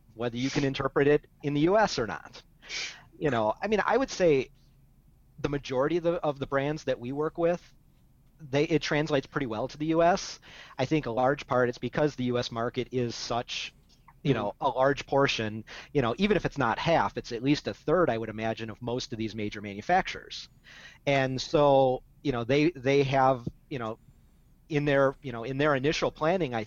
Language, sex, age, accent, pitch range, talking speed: English, male, 40-59, American, 125-145 Hz, 205 wpm